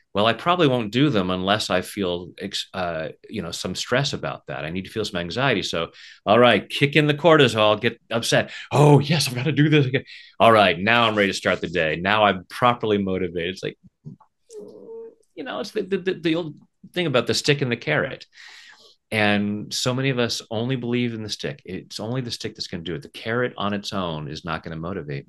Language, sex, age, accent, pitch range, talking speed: English, male, 30-49, American, 100-140 Hz, 235 wpm